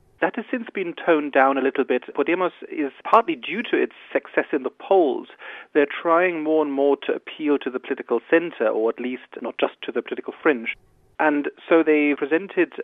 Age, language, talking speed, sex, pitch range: 40-59, English, 200 wpm, male, 120-150 Hz